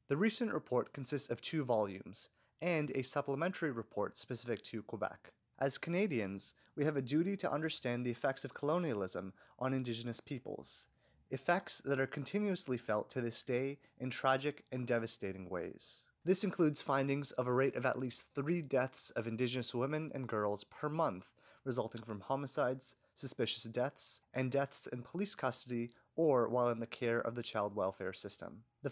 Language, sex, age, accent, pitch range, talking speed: English, male, 30-49, American, 120-155 Hz, 170 wpm